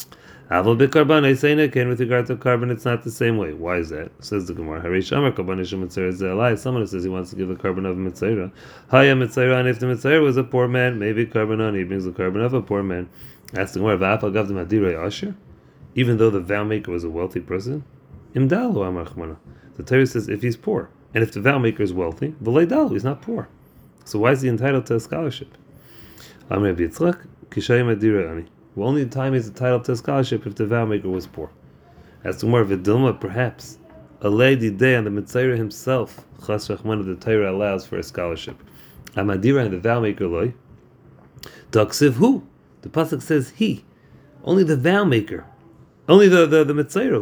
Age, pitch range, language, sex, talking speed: 30-49, 100-135 Hz, English, male, 205 wpm